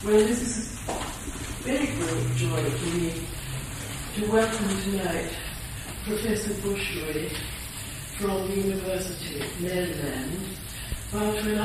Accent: British